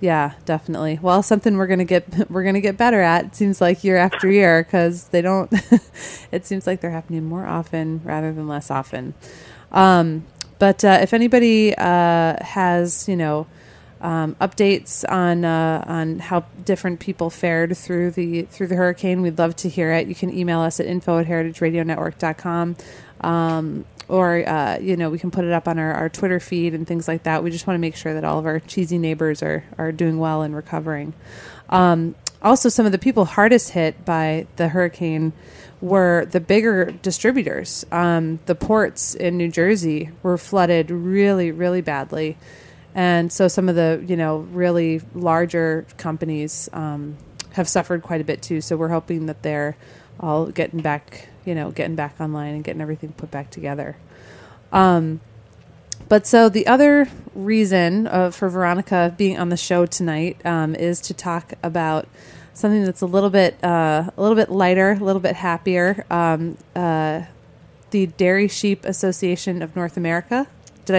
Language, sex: English, female